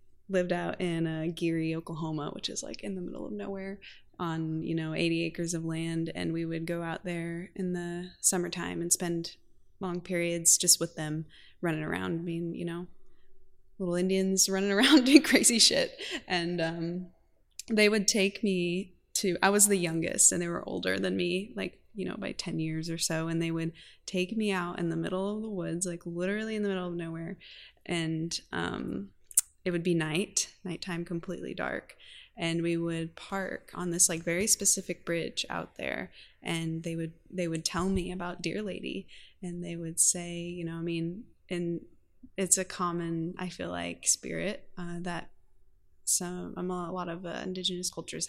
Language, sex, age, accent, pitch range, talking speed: English, female, 20-39, American, 165-185 Hz, 185 wpm